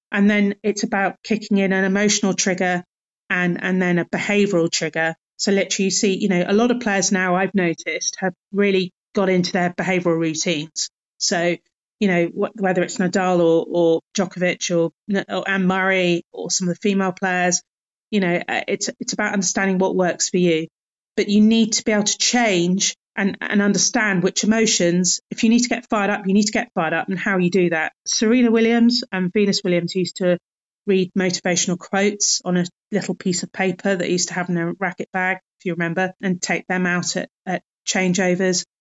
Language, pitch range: English, 180-210 Hz